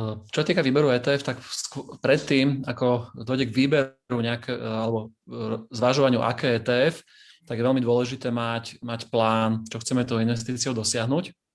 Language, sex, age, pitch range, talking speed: Slovak, male, 30-49, 120-135 Hz, 140 wpm